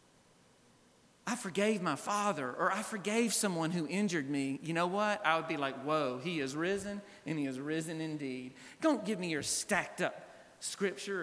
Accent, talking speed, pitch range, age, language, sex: American, 180 wpm, 155-225 Hz, 40-59, English, male